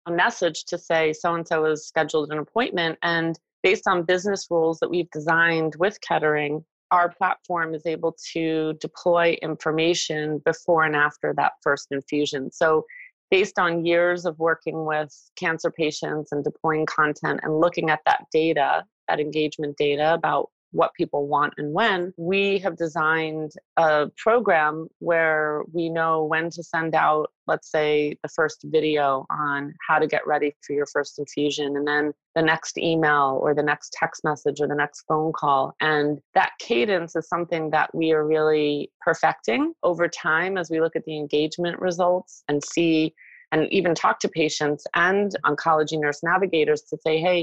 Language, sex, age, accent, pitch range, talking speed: English, female, 30-49, American, 150-170 Hz, 165 wpm